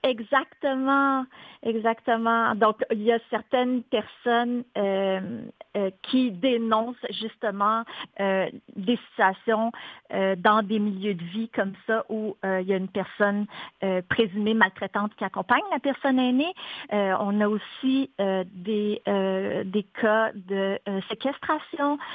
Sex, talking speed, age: female, 135 wpm, 50-69